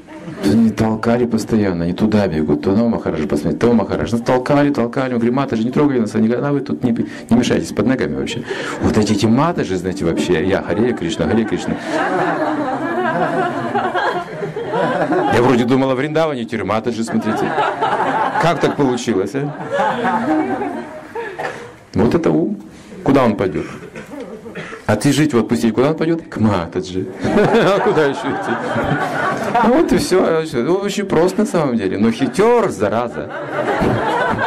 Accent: native